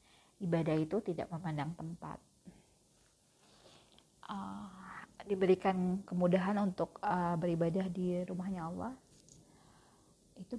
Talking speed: 85 wpm